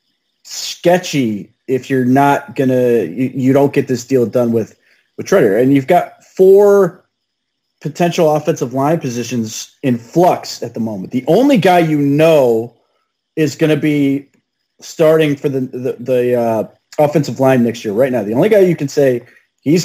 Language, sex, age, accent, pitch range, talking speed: English, male, 30-49, American, 115-145 Hz, 165 wpm